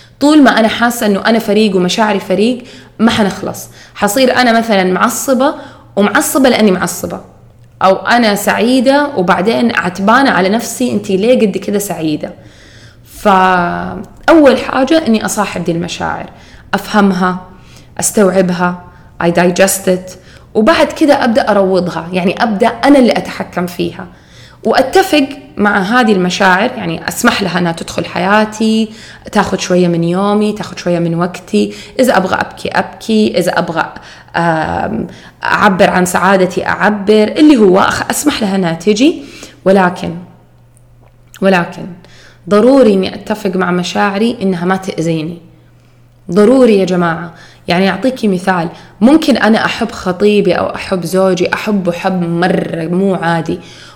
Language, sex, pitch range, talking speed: Arabic, female, 180-225 Hz, 125 wpm